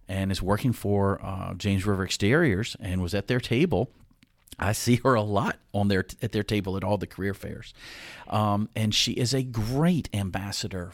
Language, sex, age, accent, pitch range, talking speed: English, male, 40-59, American, 95-115 Hz, 195 wpm